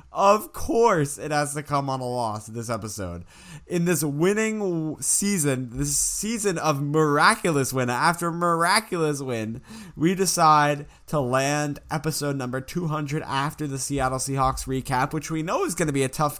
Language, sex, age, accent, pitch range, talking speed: English, male, 20-39, American, 110-145 Hz, 165 wpm